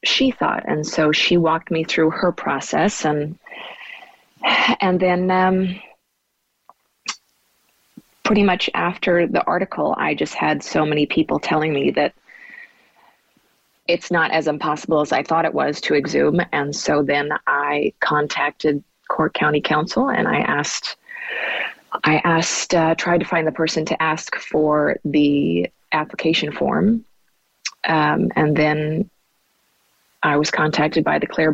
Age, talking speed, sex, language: 30-49, 140 wpm, female, English